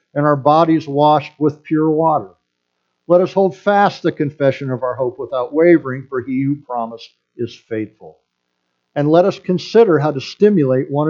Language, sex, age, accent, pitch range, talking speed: English, male, 50-69, American, 120-160 Hz, 175 wpm